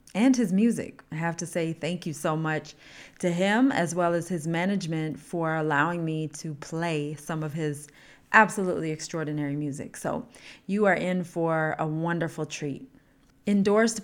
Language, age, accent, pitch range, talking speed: English, 30-49, American, 160-205 Hz, 160 wpm